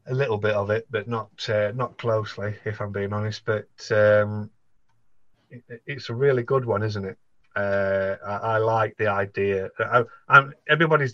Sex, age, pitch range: male, 30-49, 100-115 Hz